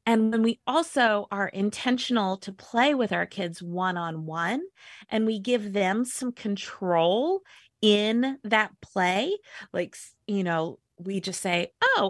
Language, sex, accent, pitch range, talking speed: English, female, American, 195-245 Hz, 150 wpm